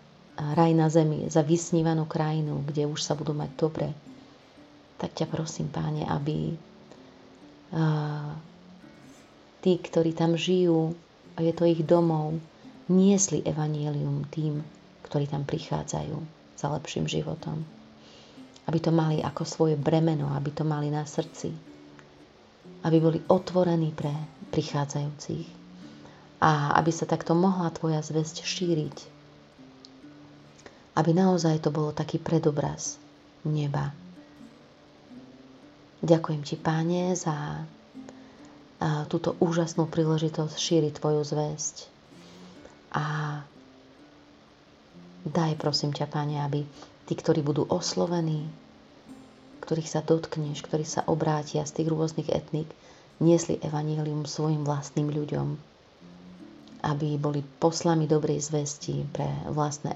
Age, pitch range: 30-49, 145-165 Hz